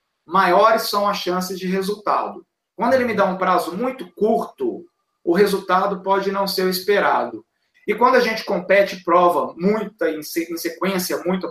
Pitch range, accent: 175-215 Hz, Brazilian